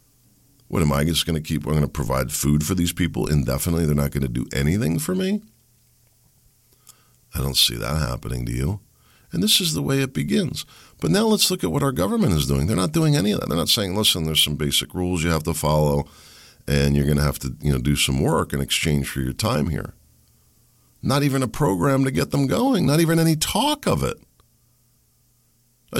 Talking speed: 220 wpm